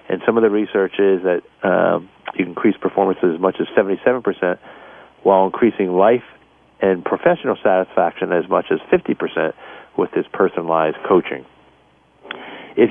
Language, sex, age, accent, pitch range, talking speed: English, male, 50-69, American, 100-120 Hz, 145 wpm